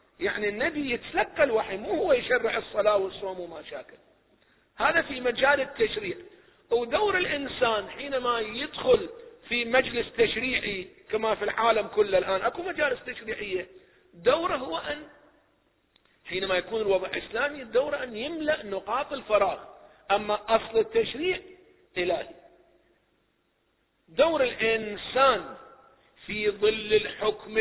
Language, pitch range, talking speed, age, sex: Arabic, 215-345 Hz, 110 wpm, 50-69, male